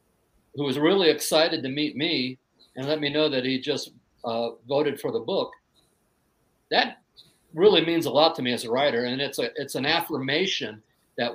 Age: 50-69